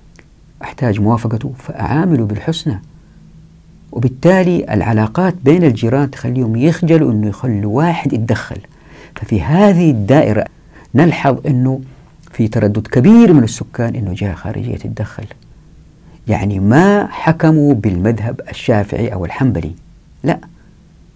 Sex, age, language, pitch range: female, 50-69, Arabic, 105-150 Hz